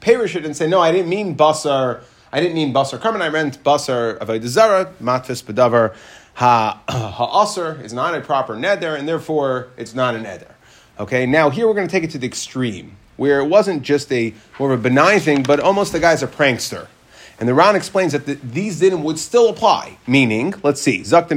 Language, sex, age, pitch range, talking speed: English, male, 30-49, 125-165 Hz, 210 wpm